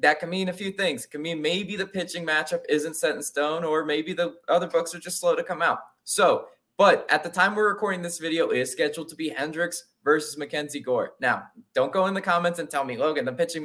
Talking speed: 255 wpm